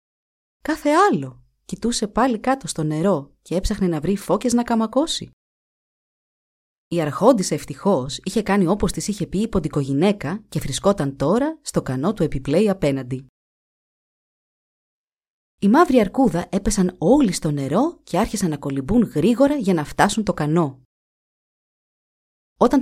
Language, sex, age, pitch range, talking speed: Greek, female, 30-49, 140-215 Hz, 135 wpm